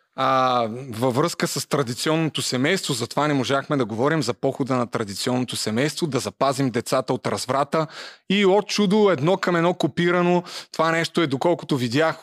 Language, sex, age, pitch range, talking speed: Bulgarian, male, 30-49, 130-170 Hz, 160 wpm